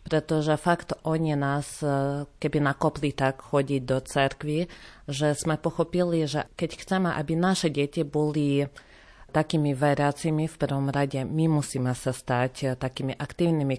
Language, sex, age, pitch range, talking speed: Slovak, female, 30-49, 140-160 Hz, 135 wpm